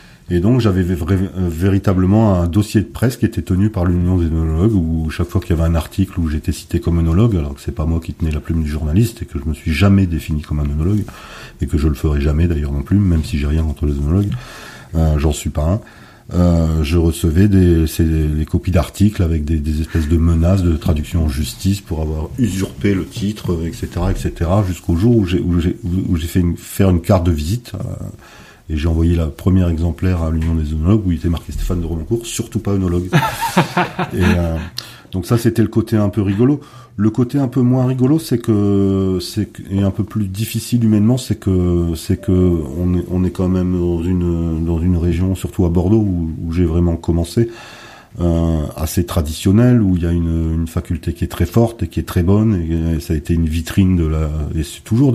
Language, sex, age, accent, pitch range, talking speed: French, male, 40-59, French, 80-100 Hz, 230 wpm